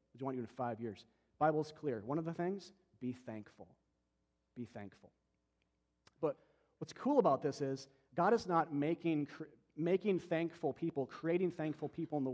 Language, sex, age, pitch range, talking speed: English, male, 40-59, 125-175 Hz, 165 wpm